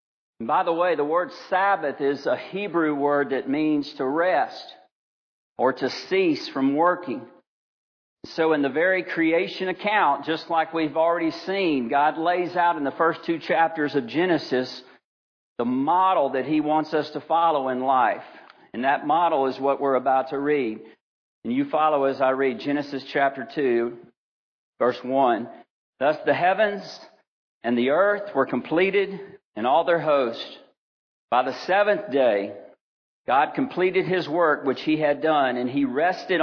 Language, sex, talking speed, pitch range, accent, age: English, male, 160 wpm, 135-180 Hz, American, 50-69